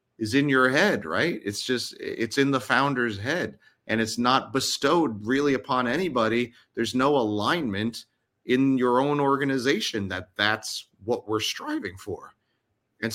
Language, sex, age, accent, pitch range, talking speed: English, male, 30-49, American, 100-125 Hz, 150 wpm